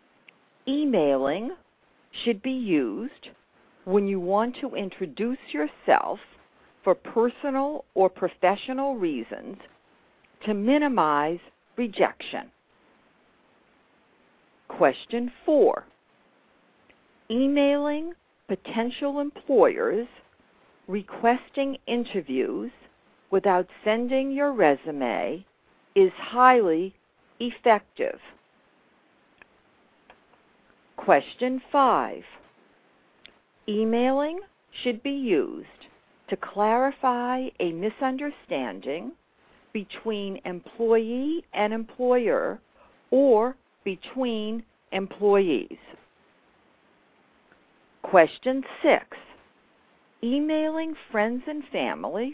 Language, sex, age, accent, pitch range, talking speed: English, female, 50-69, American, 205-285 Hz, 65 wpm